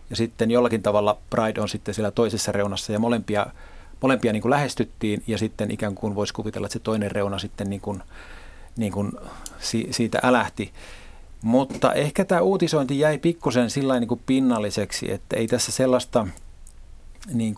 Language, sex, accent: Finnish, male, native